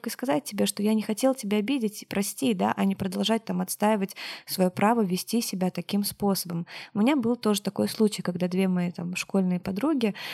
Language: Russian